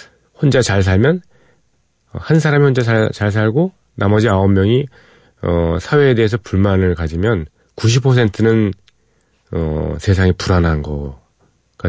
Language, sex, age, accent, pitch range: Korean, male, 40-59, native, 90-125 Hz